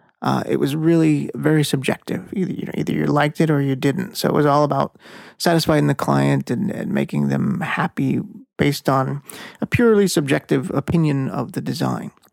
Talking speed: 185 wpm